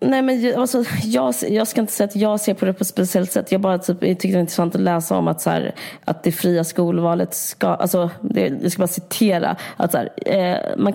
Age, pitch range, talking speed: 20-39, 165-190 Hz, 260 wpm